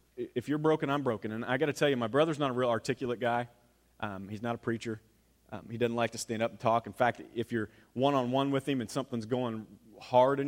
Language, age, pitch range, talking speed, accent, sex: English, 40-59, 110-155 Hz, 250 wpm, American, male